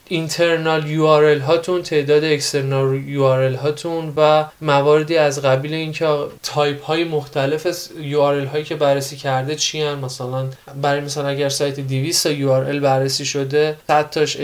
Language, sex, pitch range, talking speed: Persian, male, 135-155 Hz, 145 wpm